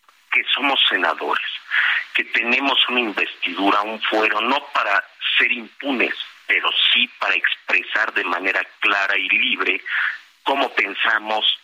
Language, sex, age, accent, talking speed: Spanish, male, 50-69, Mexican, 120 wpm